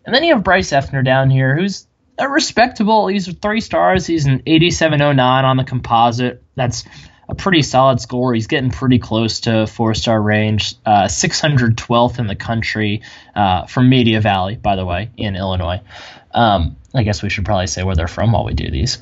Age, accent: 10-29, American